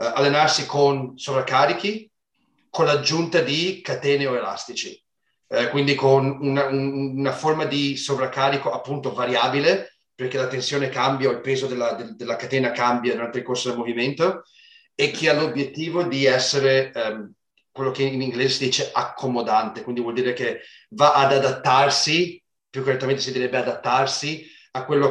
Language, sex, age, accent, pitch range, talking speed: Italian, male, 30-49, native, 125-140 Hz, 150 wpm